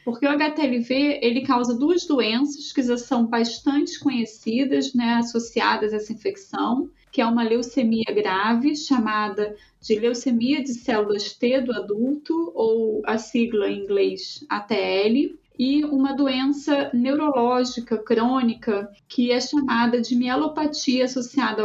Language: Portuguese